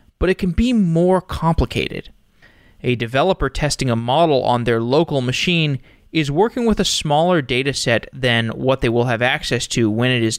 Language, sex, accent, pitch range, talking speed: English, male, American, 120-155 Hz, 180 wpm